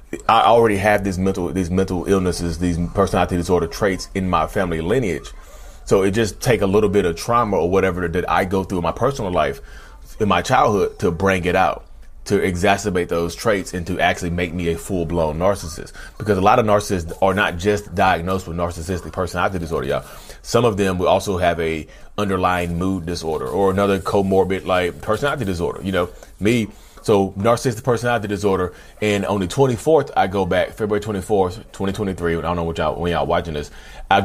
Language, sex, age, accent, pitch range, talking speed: English, male, 30-49, American, 85-100 Hz, 195 wpm